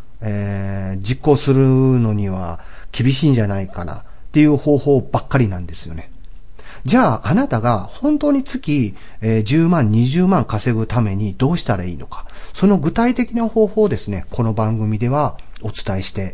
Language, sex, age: Japanese, male, 40-59